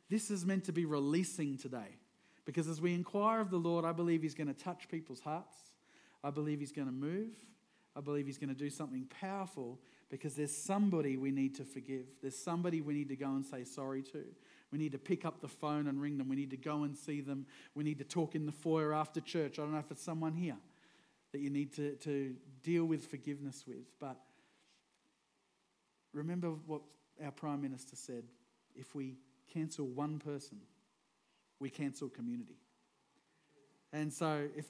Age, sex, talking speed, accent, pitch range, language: 40-59, male, 195 wpm, Australian, 135-165 Hz, English